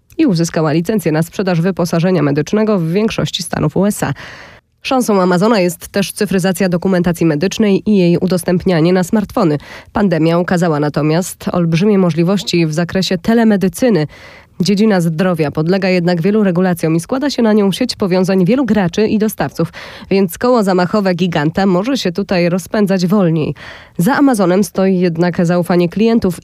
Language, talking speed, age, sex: Polish, 145 wpm, 20-39, female